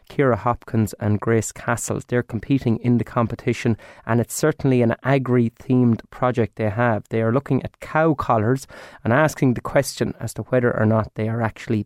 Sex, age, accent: male, 30-49, Irish